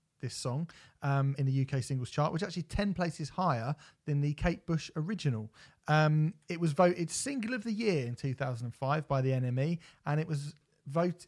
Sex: male